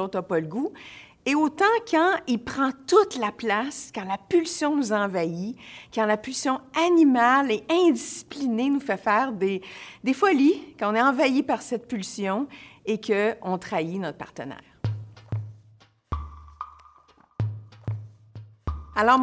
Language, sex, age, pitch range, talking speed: French, female, 50-69, 195-270 Hz, 130 wpm